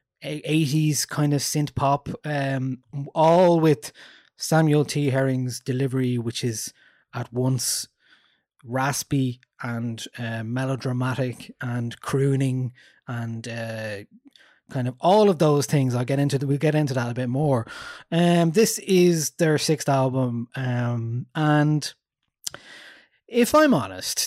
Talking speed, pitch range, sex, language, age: 130 wpm, 120-150 Hz, male, English, 20-39